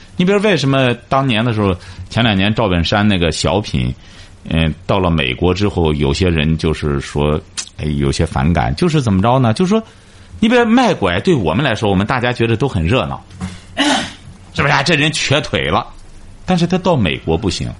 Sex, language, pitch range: male, Chinese, 90-135 Hz